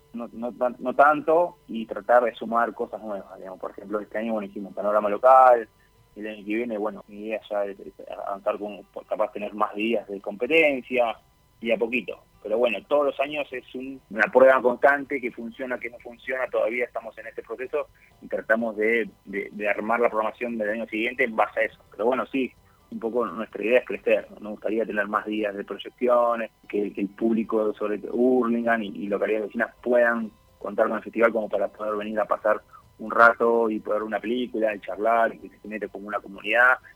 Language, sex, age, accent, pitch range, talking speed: Spanish, male, 20-39, Argentinian, 105-125 Hz, 205 wpm